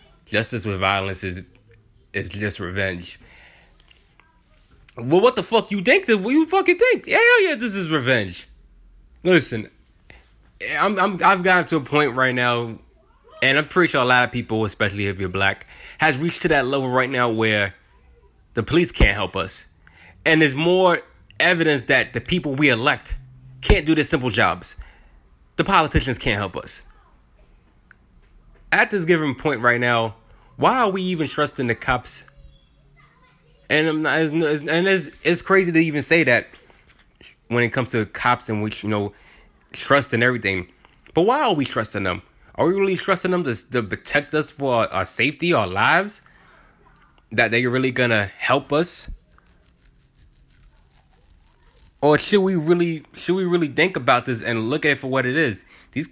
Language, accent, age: English, American, 20-39